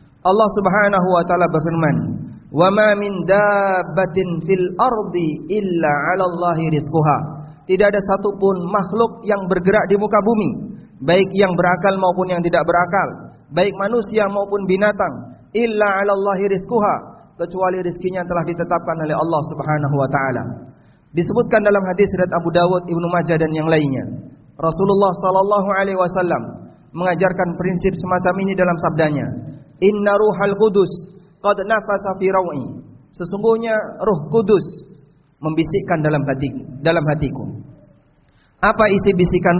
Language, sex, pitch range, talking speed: Indonesian, male, 165-200 Hz, 120 wpm